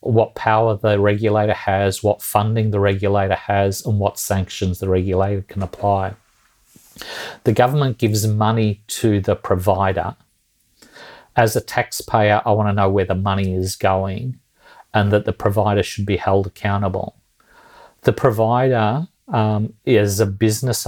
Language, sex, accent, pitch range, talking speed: English, male, Australian, 100-115 Hz, 140 wpm